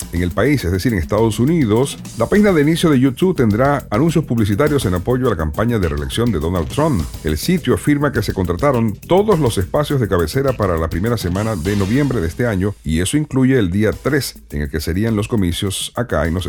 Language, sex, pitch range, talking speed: Spanish, male, 90-130 Hz, 225 wpm